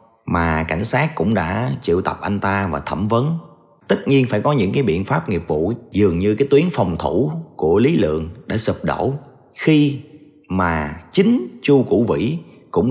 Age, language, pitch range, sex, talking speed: 30-49, Vietnamese, 85-130 Hz, male, 190 wpm